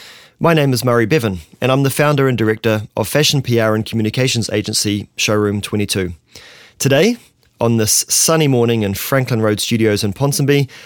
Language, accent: English, Australian